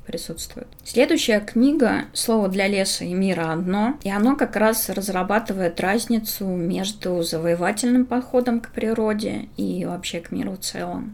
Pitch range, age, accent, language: 185-230 Hz, 20-39, native, Russian